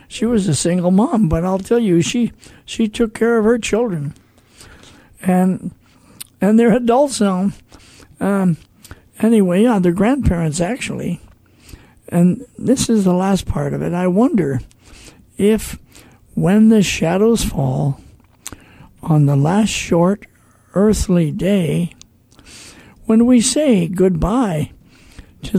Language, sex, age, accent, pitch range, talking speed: English, male, 60-79, American, 140-220 Hz, 125 wpm